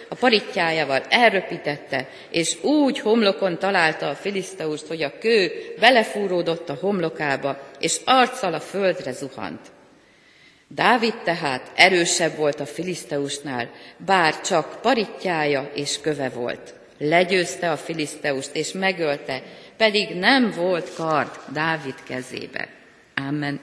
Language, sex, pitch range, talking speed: Hungarian, female, 145-200 Hz, 110 wpm